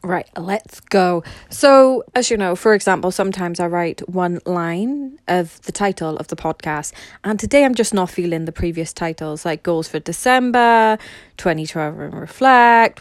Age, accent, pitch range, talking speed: 20-39, British, 170-225 Hz, 165 wpm